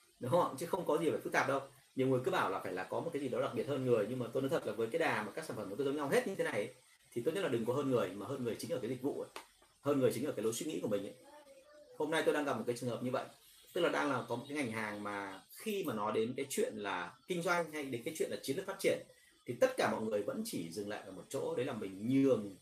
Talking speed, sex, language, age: 345 wpm, male, Vietnamese, 30-49